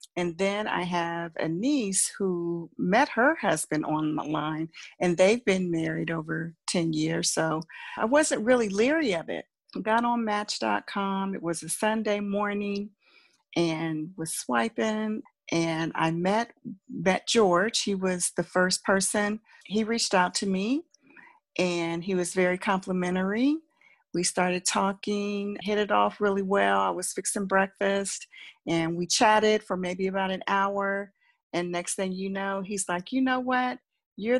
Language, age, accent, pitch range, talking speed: English, 40-59, American, 180-225 Hz, 155 wpm